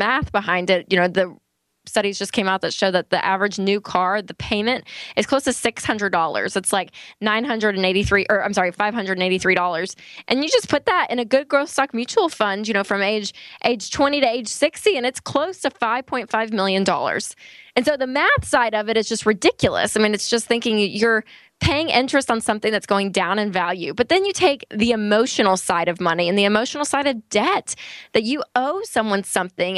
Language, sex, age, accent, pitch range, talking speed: English, female, 20-39, American, 195-245 Hz, 235 wpm